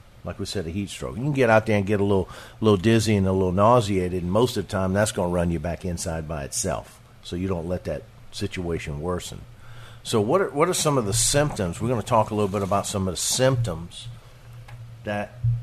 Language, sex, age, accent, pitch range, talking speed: English, male, 50-69, American, 95-120 Hz, 245 wpm